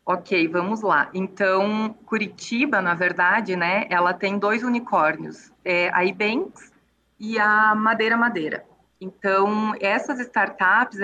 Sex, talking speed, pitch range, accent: female, 120 wpm, 190-240 Hz, Brazilian